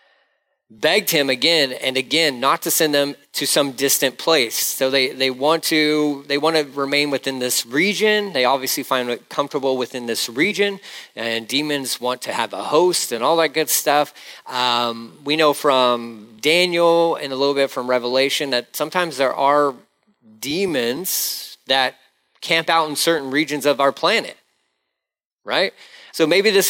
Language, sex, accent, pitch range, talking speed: English, male, American, 130-180 Hz, 170 wpm